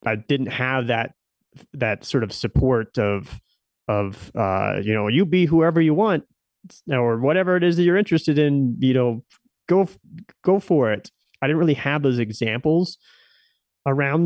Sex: male